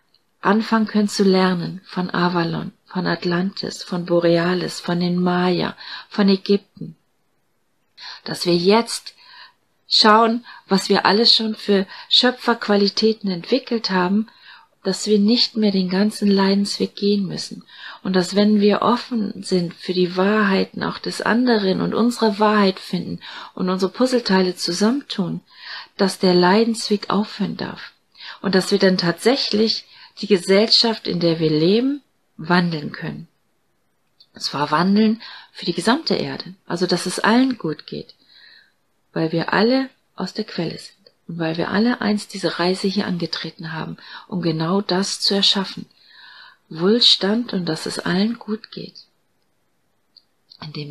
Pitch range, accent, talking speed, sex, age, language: 180-220 Hz, German, 140 wpm, female, 40-59, German